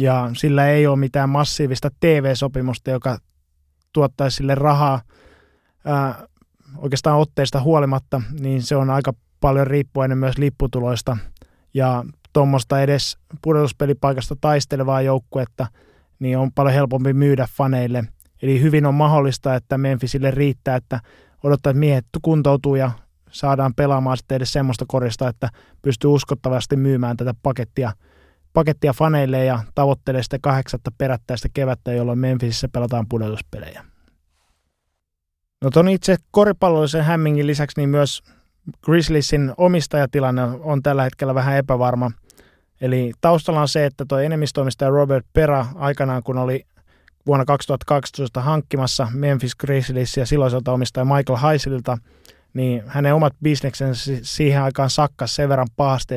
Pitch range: 125-145 Hz